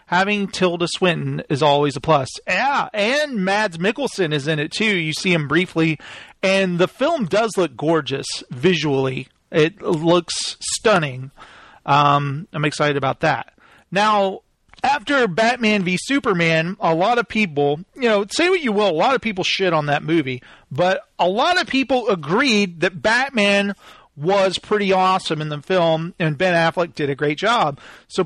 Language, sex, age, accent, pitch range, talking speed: English, male, 40-59, American, 155-205 Hz, 170 wpm